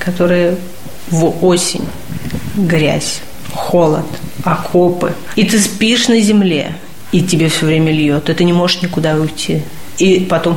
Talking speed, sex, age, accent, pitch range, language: 135 wpm, female, 30-49, native, 165-190 Hz, Russian